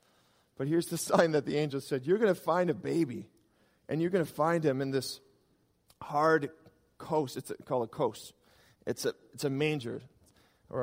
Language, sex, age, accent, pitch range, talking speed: English, male, 40-59, American, 125-165 Hz, 190 wpm